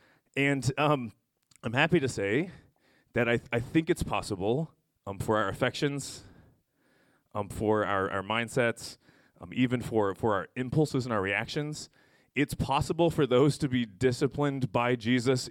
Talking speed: 155 wpm